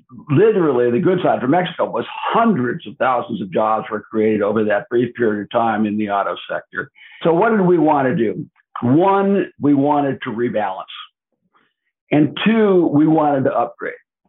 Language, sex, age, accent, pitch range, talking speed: English, male, 60-79, American, 120-155 Hz, 175 wpm